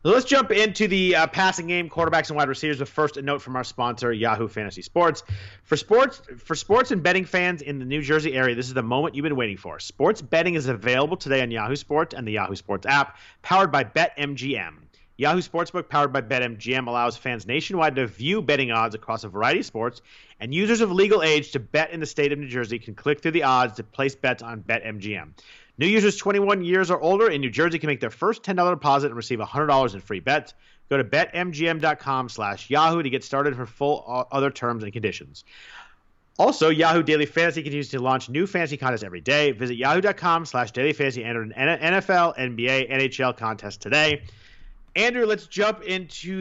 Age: 40-59